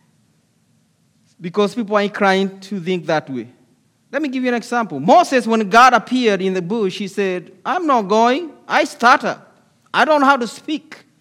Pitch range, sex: 185-235 Hz, male